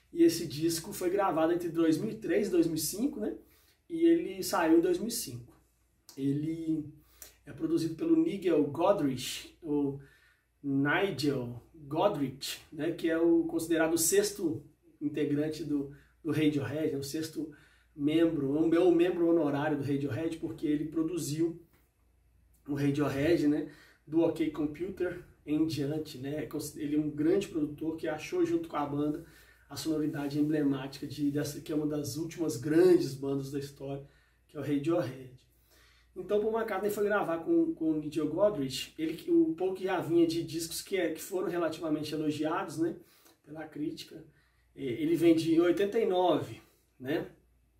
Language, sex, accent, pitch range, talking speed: Portuguese, male, Brazilian, 145-170 Hz, 150 wpm